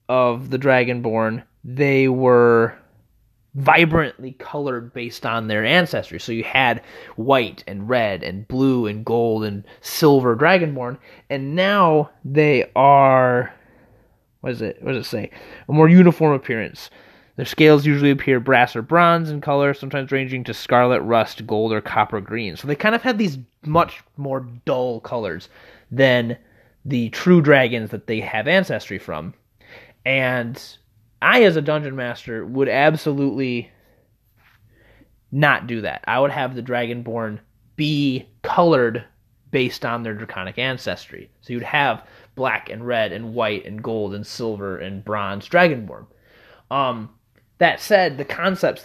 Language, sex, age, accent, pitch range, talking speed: English, male, 30-49, American, 115-145 Hz, 145 wpm